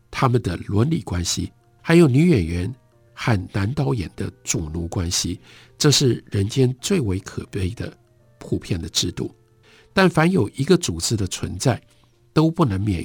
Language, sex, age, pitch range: Chinese, male, 60-79, 100-140 Hz